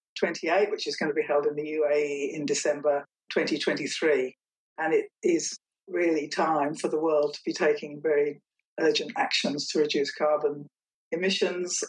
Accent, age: British, 60-79